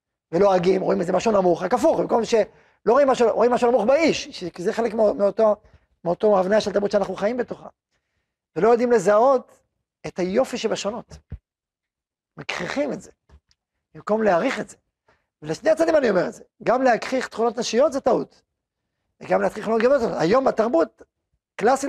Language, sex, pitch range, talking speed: Hebrew, male, 200-250 Hz, 155 wpm